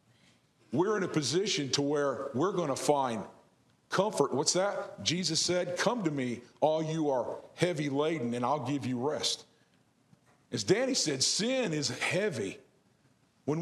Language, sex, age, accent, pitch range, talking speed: English, male, 50-69, American, 145-185 Hz, 155 wpm